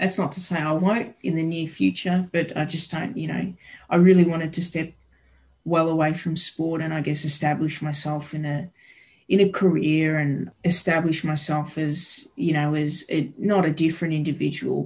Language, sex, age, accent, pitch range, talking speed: English, female, 20-39, Australian, 150-175 Hz, 190 wpm